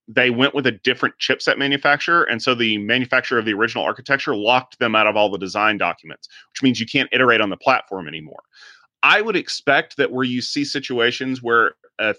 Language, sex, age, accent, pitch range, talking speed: English, male, 30-49, American, 115-140 Hz, 205 wpm